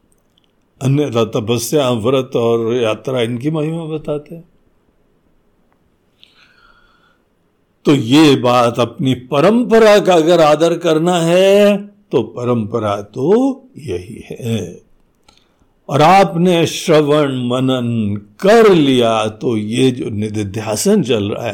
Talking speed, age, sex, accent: 100 wpm, 60-79, male, native